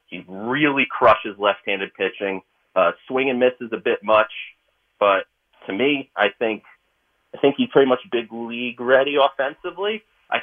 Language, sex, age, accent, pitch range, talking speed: English, male, 30-49, American, 95-120 Hz, 160 wpm